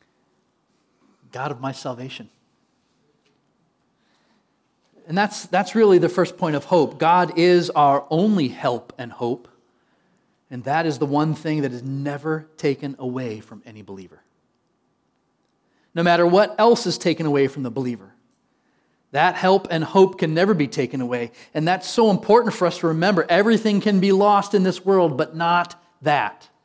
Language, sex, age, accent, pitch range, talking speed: English, male, 40-59, American, 145-200 Hz, 160 wpm